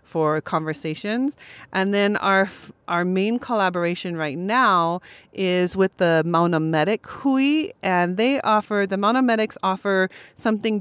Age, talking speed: 30-49, 135 wpm